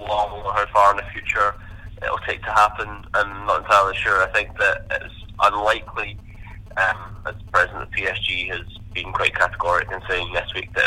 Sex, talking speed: male, 200 wpm